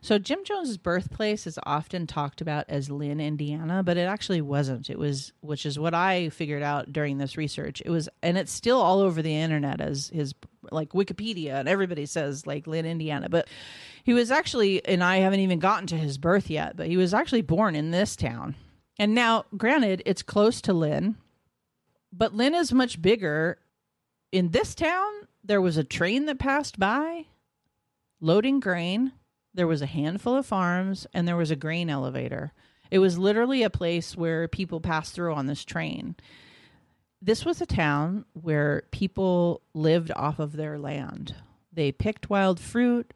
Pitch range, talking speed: 155-205 Hz, 180 wpm